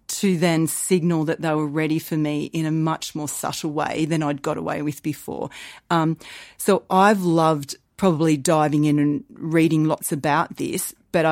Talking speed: 180 wpm